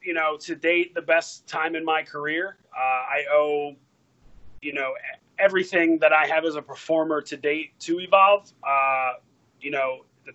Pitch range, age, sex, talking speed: 140-175 Hz, 30-49, male, 175 wpm